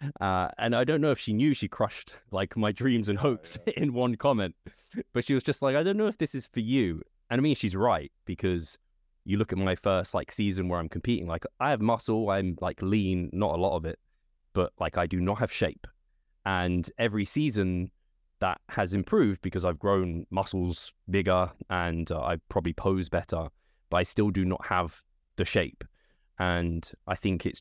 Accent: British